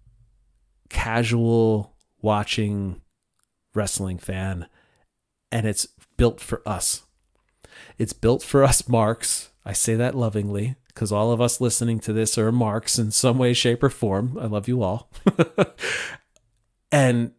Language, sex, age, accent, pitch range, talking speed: English, male, 30-49, American, 105-120 Hz, 130 wpm